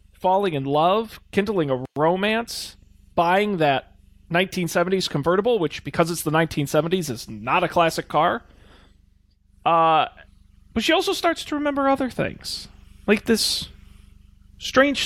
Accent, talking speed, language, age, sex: American, 130 wpm, English, 40-59, male